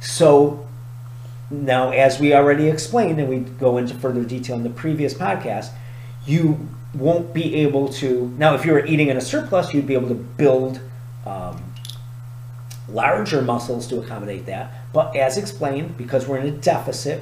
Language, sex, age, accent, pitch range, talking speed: English, male, 40-59, American, 120-150 Hz, 165 wpm